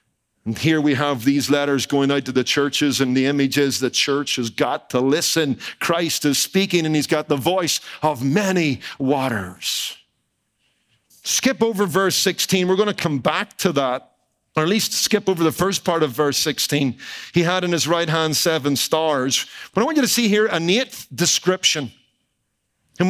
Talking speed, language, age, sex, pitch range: 185 wpm, English, 50-69, male, 145-200 Hz